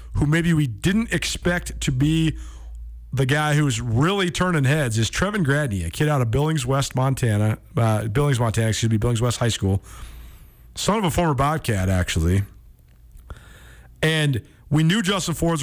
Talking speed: 165 wpm